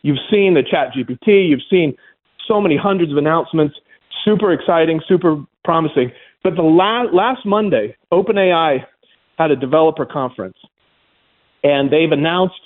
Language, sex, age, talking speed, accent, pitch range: English, male, 40-59, 135 wpm, American, 150-200 Hz